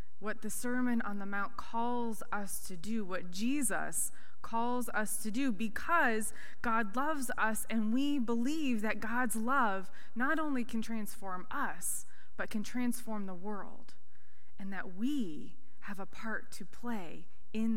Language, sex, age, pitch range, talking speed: English, female, 20-39, 180-230 Hz, 150 wpm